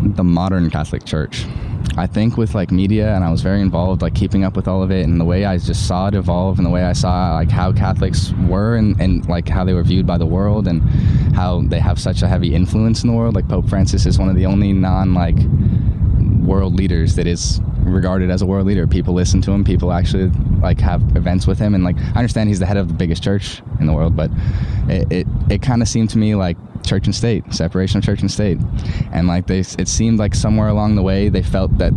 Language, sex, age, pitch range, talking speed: English, male, 10-29, 90-105 Hz, 250 wpm